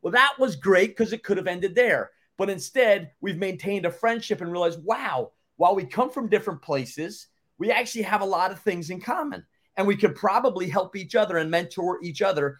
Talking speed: 215 wpm